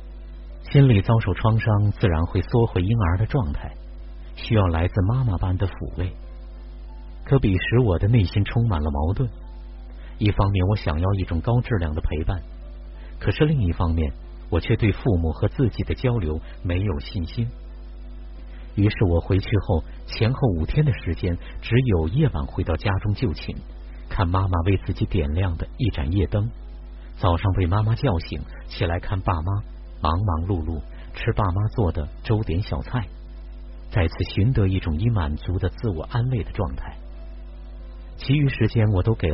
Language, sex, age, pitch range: Chinese, male, 50-69, 85-110 Hz